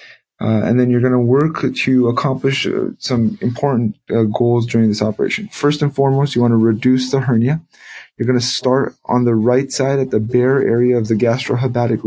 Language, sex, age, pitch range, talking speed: English, male, 20-39, 115-130 Hz, 205 wpm